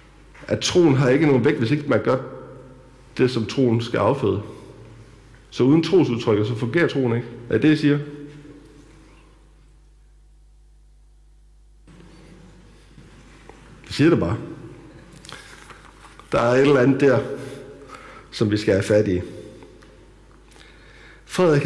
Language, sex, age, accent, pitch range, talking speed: Danish, male, 60-79, native, 110-150 Hz, 120 wpm